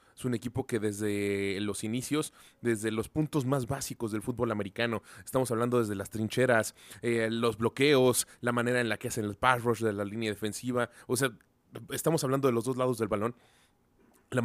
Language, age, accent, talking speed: Spanish, 20-39, Mexican, 195 wpm